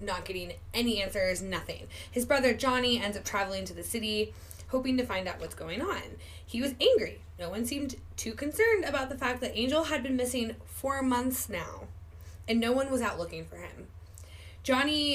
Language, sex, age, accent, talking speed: English, female, 10-29, American, 195 wpm